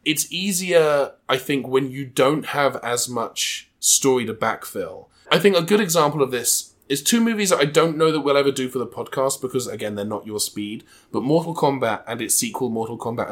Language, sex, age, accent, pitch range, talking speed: English, male, 20-39, British, 115-160 Hz, 215 wpm